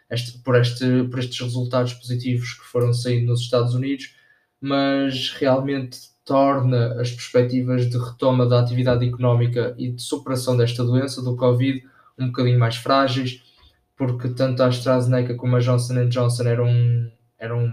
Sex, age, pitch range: male, 20-39, 120-130 Hz